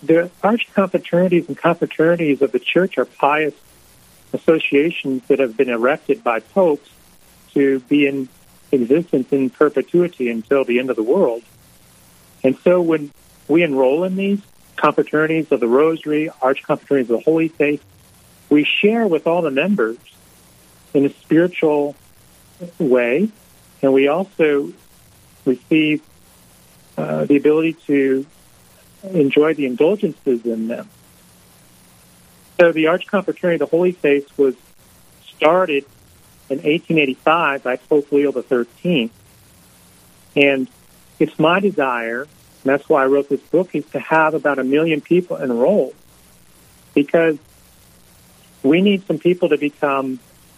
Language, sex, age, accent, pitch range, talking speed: English, male, 40-59, American, 120-160 Hz, 130 wpm